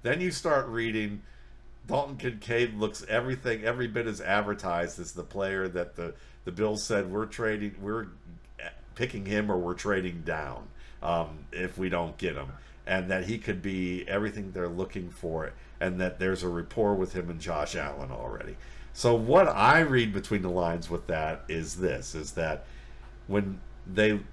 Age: 50-69